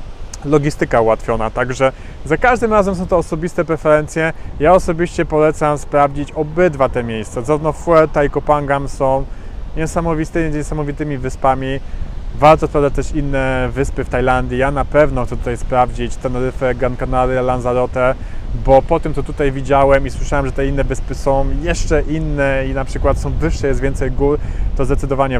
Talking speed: 155 wpm